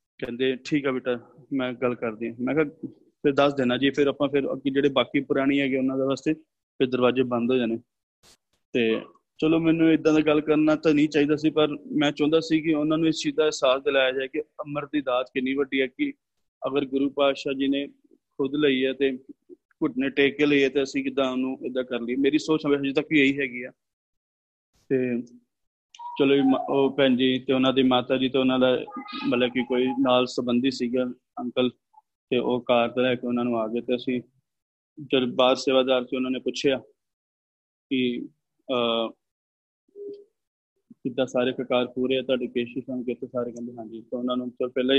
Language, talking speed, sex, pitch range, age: Punjabi, 180 wpm, male, 125-145 Hz, 30-49